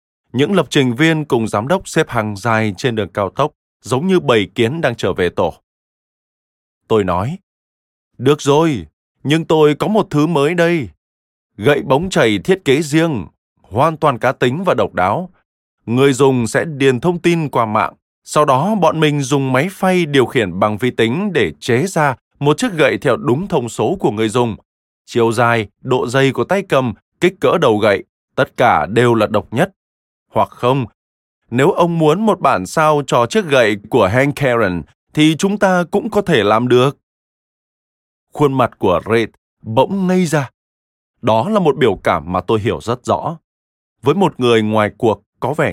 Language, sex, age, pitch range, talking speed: Vietnamese, male, 20-39, 105-155 Hz, 185 wpm